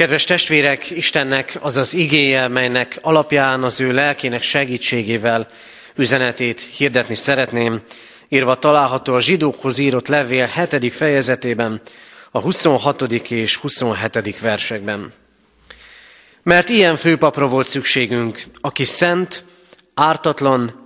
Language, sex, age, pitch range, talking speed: Hungarian, male, 30-49, 120-150 Hz, 105 wpm